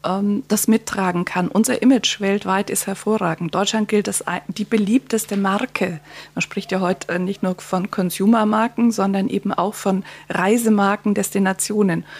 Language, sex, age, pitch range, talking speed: German, female, 50-69, 200-230 Hz, 140 wpm